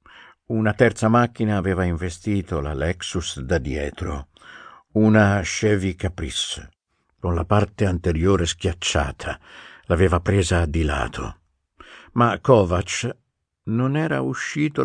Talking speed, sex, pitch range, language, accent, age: 105 wpm, male, 85-110 Hz, Italian, native, 50-69